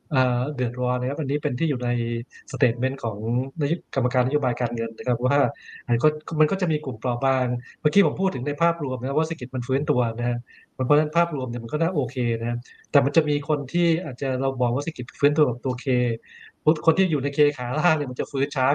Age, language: 20-39, Thai